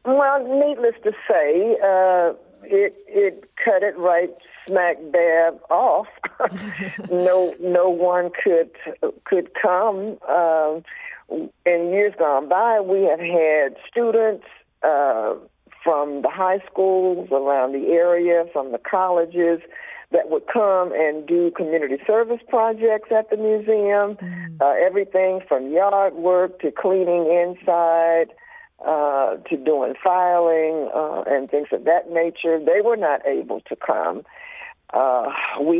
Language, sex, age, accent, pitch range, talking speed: English, female, 60-79, American, 160-215 Hz, 125 wpm